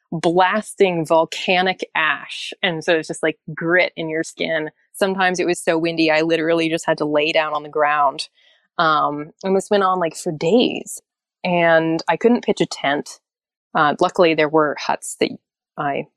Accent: American